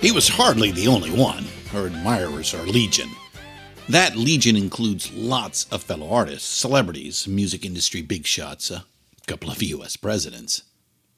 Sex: male